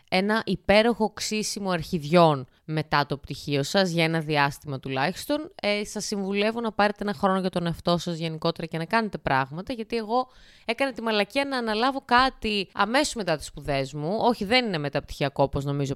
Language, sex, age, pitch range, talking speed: Greek, female, 20-39, 170-255 Hz, 175 wpm